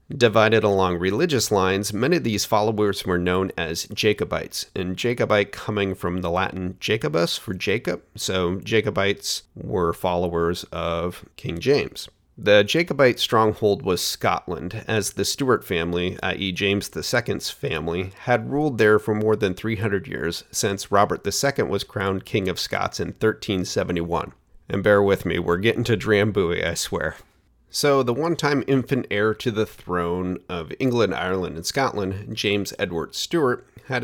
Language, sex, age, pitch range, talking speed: English, male, 40-59, 95-120 Hz, 150 wpm